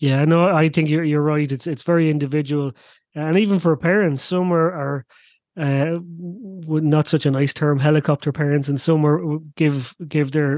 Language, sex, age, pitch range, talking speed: English, male, 30-49, 145-175 Hz, 180 wpm